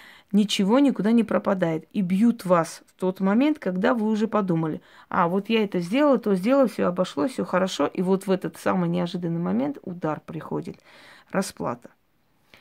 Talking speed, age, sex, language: 165 wpm, 20-39, female, Russian